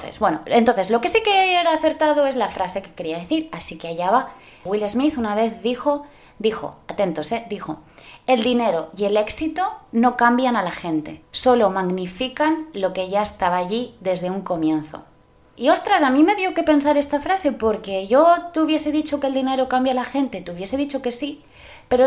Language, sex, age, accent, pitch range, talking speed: Spanish, female, 20-39, Spanish, 190-265 Hz, 205 wpm